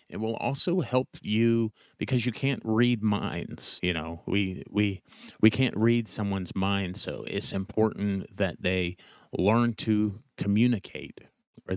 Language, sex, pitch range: English, male, 95-120 Hz